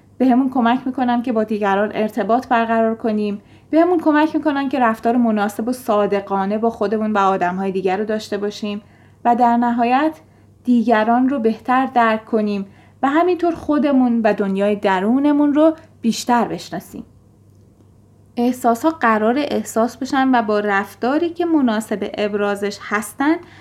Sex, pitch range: female, 205-265 Hz